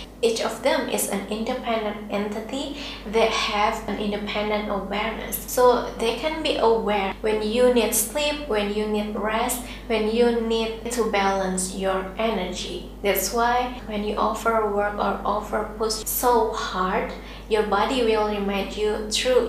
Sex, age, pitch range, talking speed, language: female, 20-39, 205-240 Hz, 150 wpm, English